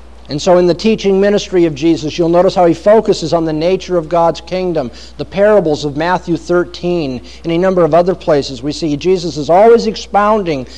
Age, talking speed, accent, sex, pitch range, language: 50-69, 200 wpm, American, male, 150-210 Hz, English